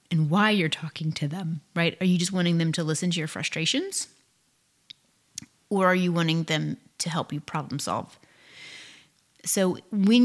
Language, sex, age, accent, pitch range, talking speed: English, female, 30-49, American, 155-180 Hz, 170 wpm